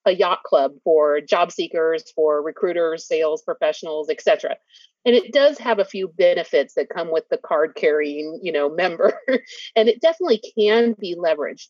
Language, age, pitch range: English, 30-49, 175-270 Hz